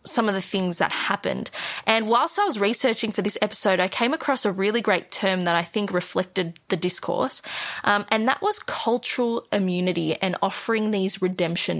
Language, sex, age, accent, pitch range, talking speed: English, female, 20-39, Australian, 185-235 Hz, 190 wpm